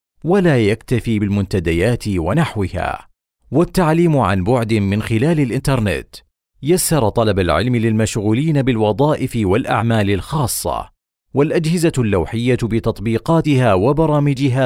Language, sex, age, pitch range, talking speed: Arabic, male, 40-59, 95-140 Hz, 85 wpm